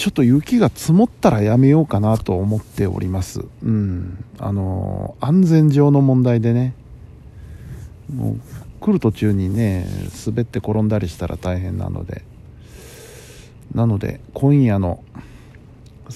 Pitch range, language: 100-120 Hz, Japanese